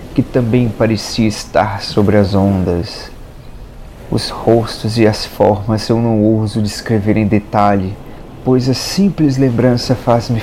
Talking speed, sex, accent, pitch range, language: 140 wpm, male, Brazilian, 110-125 Hz, Portuguese